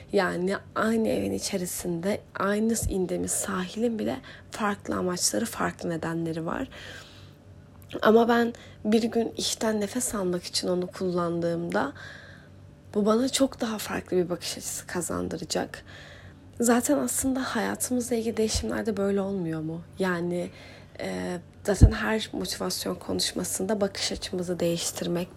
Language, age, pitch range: Turkish, 30-49, 175-235 Hz